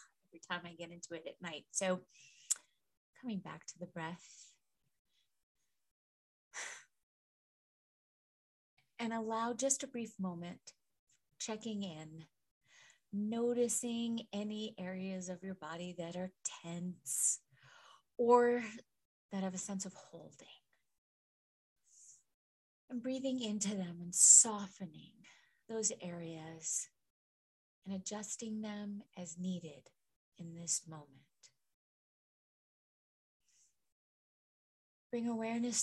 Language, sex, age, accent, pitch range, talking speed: English, female, 30-49, American, 175-220 Hz, 90 wpm